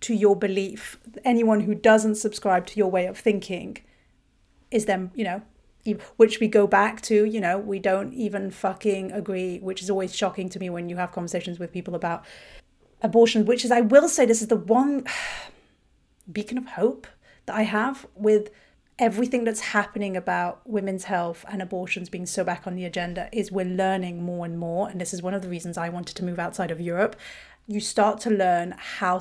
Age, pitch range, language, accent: 30-49, 185-220 Hz, English, British